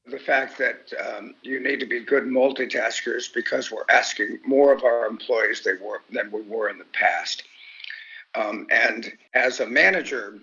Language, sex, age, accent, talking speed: English, male, 50-69, American, 160 wpm